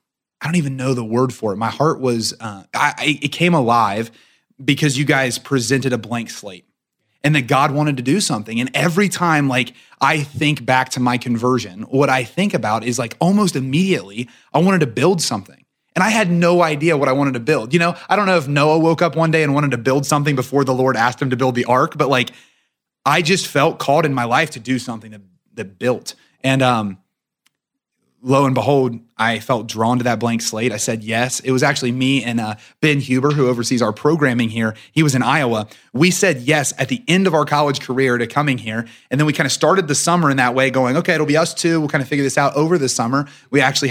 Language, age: English, 30-49